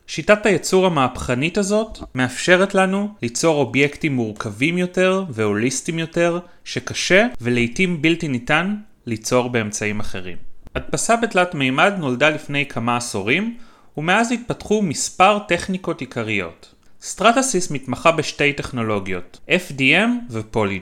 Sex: male